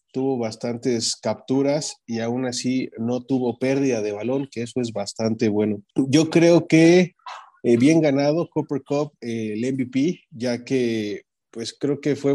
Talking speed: 160 wpm